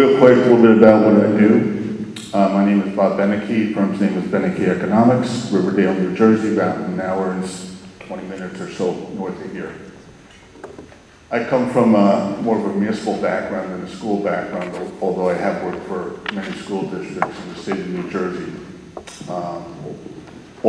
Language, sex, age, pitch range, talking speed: English, male, 50-69, 95-105 Hz, 175 wpm